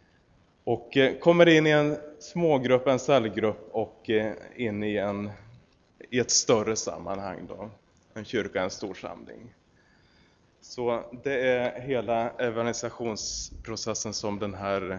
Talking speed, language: 120 wpm, Swedish